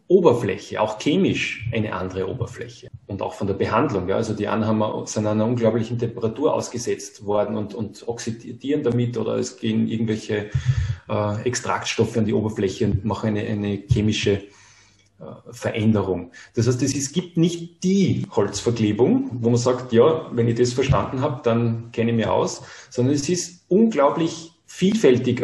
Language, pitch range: English, 115-140 Hz